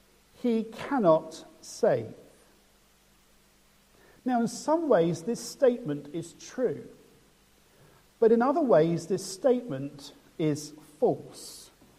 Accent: British